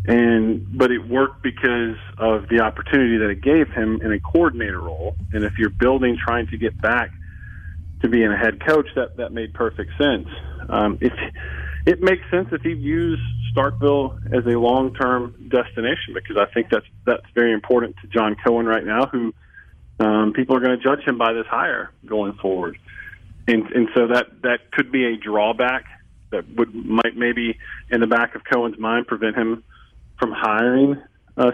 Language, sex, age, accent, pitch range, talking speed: English, male, 40-59, American, 110-130 Hz, 185 wpm